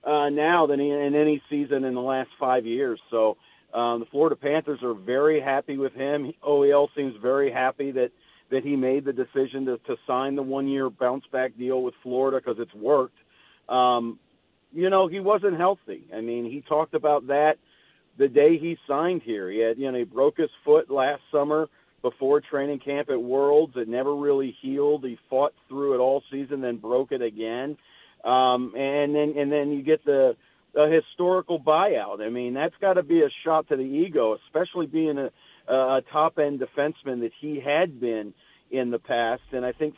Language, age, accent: English, 50-69, American